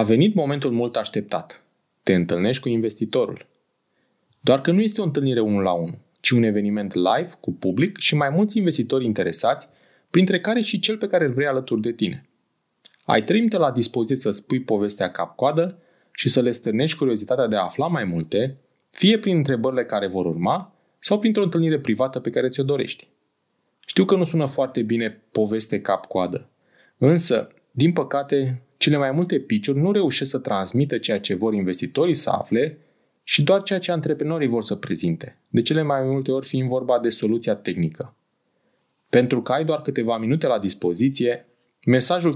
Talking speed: 175 wpm